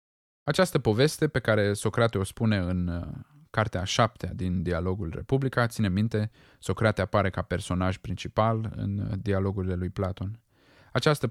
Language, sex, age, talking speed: Romanian, male, 20-39, 135 wpm